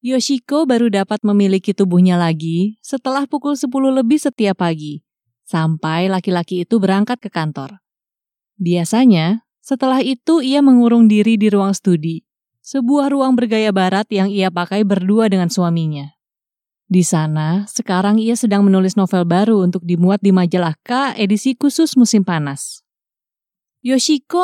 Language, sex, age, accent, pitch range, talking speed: Indonesian, female, 20-39, native, 175-230 Hz, 135 wpm